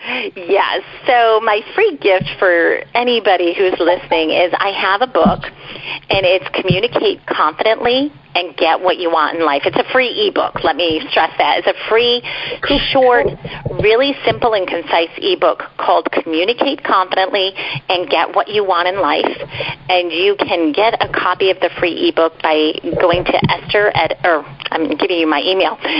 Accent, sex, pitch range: American, female, 160-230 Hz